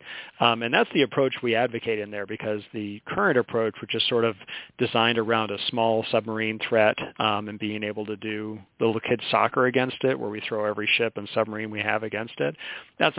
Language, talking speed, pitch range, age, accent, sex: English, 210 wpm, 105-120 Hz, 40-59, American, male